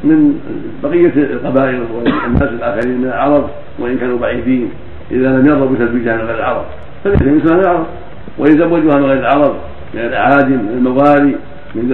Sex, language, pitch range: male, Arabic, 130-160 Hz